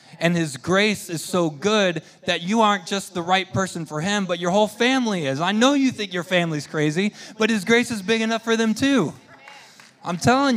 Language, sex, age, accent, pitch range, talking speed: English, male, 20-39, American, 135-180 Hz, 215 wpm